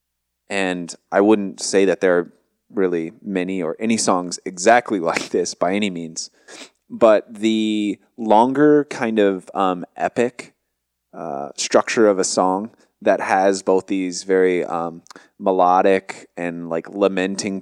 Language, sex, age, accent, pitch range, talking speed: English, male, 20-39, American, 85-100 Hz, 135 wpm